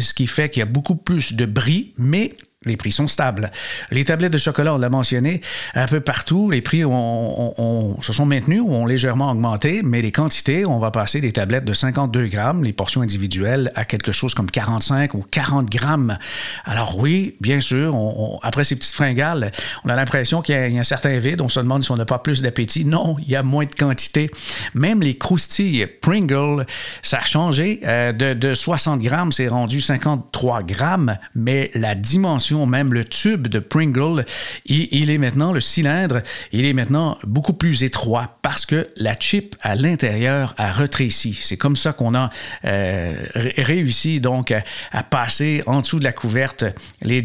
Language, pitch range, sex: French, 120-150 Hz, male